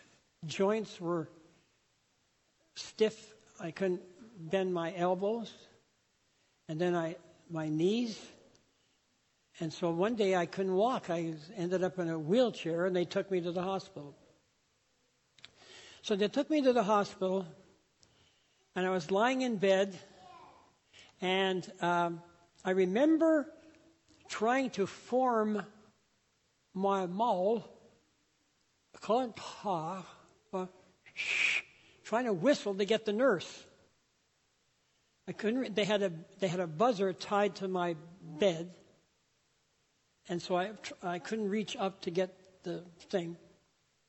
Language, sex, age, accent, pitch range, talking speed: English, male, 60-79, American, 175-210 Hz, 120 wpm